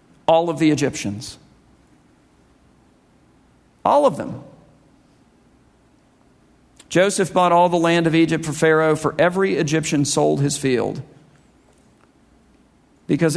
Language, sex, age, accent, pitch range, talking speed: English, male, 50-69, American, 140-170 Hz, 105 wpm